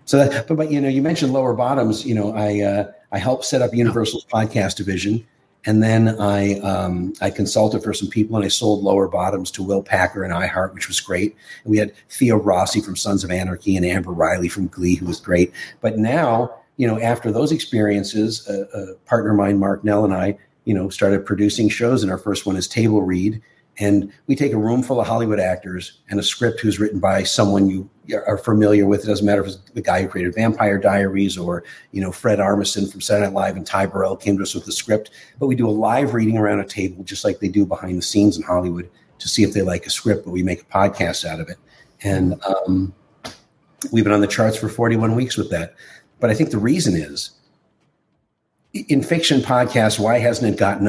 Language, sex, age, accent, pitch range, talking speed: English, male, 40-59, American, 95-115 Hz, 230 wpm